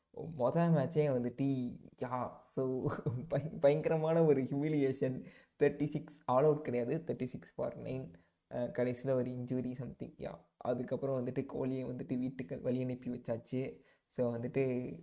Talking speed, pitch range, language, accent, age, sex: 130 wpm, 125-140 Hz, Tamil, native, 20-39, male